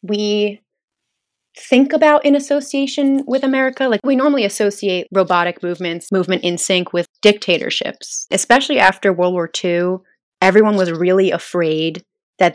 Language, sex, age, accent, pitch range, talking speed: English, female, 20-39, American, 170-210 Hz, 135 wpm